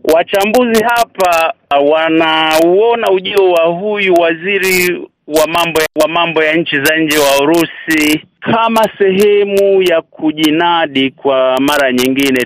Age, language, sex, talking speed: 50-69, Swahili, male, 120 wpm